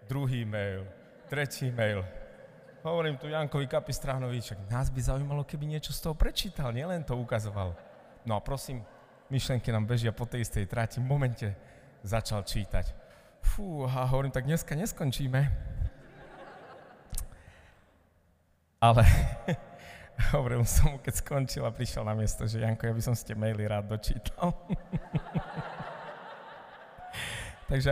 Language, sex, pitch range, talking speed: Slovak, male, 90-125 Hz, 125 wpm